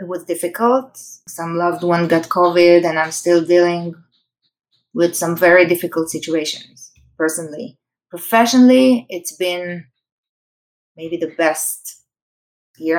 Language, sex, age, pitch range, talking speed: English, female, 20-39, 165-195 Hz, 115 wpm